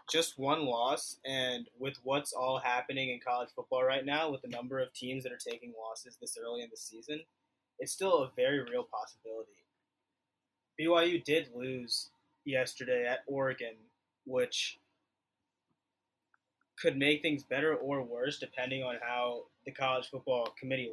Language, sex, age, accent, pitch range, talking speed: English, male, 20-39, American, 125-170 Hz, 150 wpm